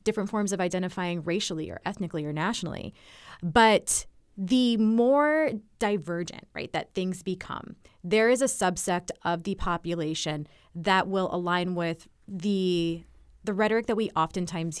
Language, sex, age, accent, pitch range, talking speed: English, female, 20-39, American, 165-210 Hz, 140 wpm